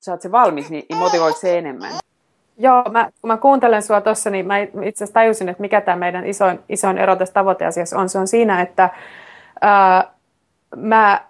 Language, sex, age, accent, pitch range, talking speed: Finnish, female, 30-49, native, 170-215 Hz, 175 wpm